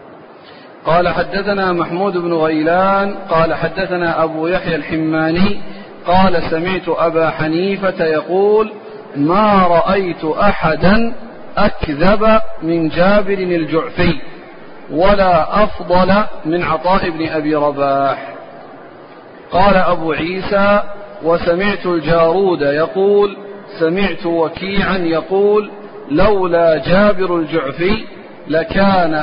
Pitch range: 165-195 Hz